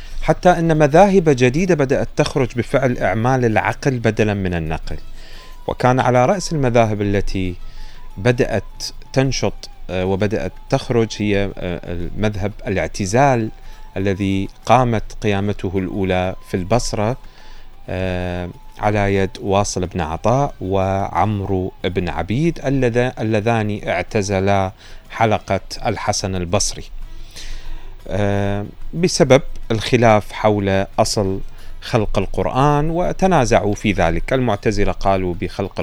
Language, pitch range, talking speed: Arabic, 95-125 Hz, 90 wpm